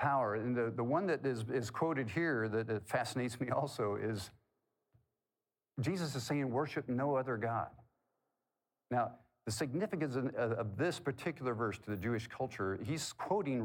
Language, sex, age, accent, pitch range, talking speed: English, male, 50-69, American, 105-130 Hz, 165 wpm